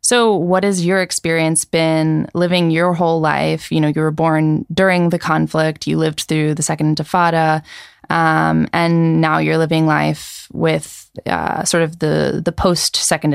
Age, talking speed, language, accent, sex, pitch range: 20-39, 165 wpm, English, American, female, 155-195 Hz